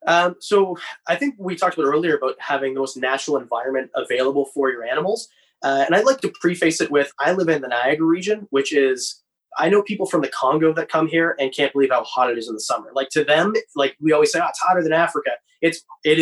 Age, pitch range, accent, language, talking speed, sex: 20-39, 135-185 Hz, American, English, 250 wpm, male